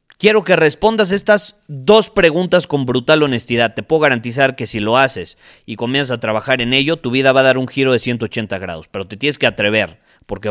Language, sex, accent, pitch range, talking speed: Spanish, male, Mexican, 115-150 Hz, 215 wpm